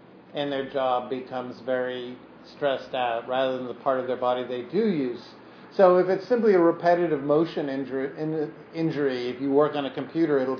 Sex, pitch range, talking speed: male, 125-150 Hz, 180 wpm